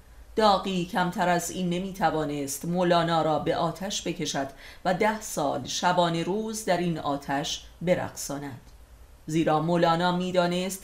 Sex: female